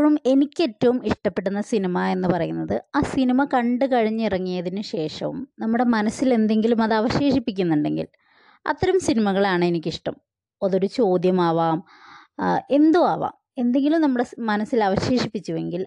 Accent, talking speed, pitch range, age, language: native, 90 wpm, 180-255 Hz, 20-39, Malayalam